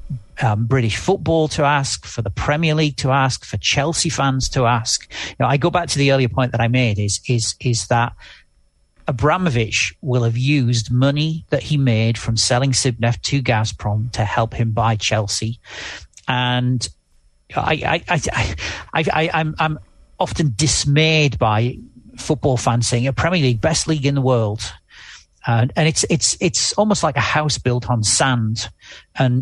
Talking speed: 175 wpm